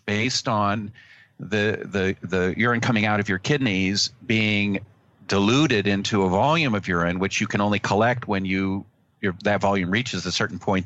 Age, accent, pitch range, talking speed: 50-69, American, 95-125 Hz, 175 wpm